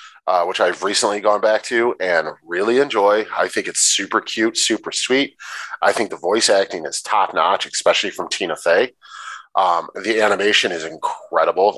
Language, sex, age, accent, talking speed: English, male, 30-49, American, 175 wpm